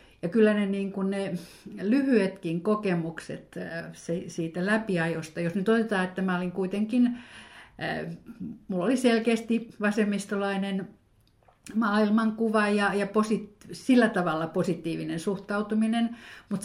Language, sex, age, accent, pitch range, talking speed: Finnish, female, 50-69, native, 170-210 Hz, 110 wpm